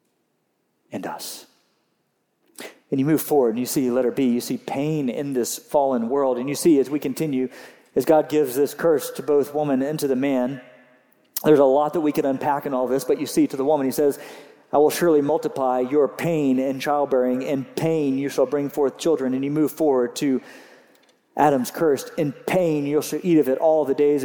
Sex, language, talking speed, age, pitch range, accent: male, English, 220 wpm, 40-59, 130-155 Hz, American